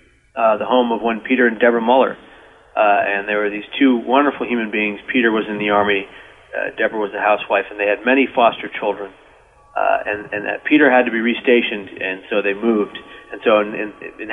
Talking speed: 205 wpm